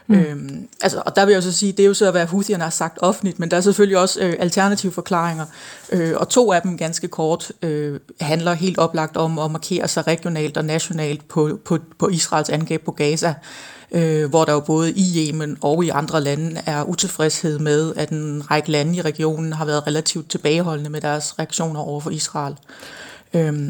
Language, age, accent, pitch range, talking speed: Danish, 30-49, native, 155-180 Hz, 210 wpm